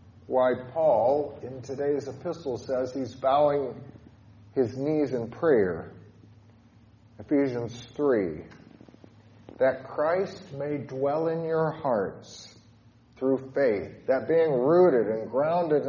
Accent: American